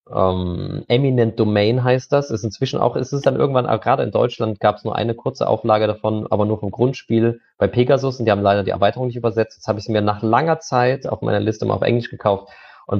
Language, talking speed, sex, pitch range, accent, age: German, 245 wpm, male, 100-120 Hz, German, 20-39